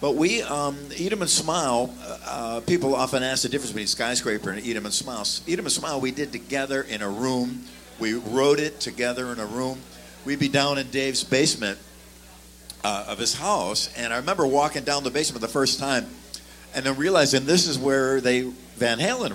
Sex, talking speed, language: male, 210 wpm, English